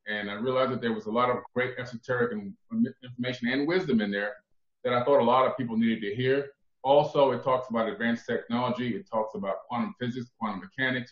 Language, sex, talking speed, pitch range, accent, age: English, male, 210 wpm, 115-145 Hz, American, 30-49